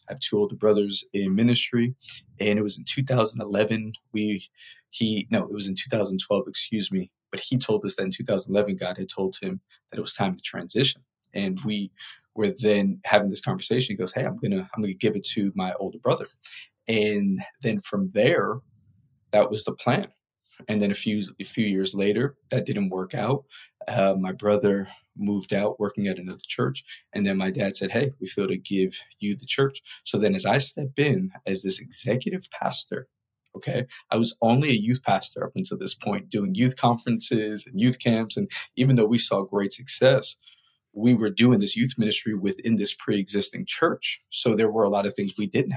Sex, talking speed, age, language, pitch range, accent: male, 205 wpm, 20-39, English, 100-120 Hz, American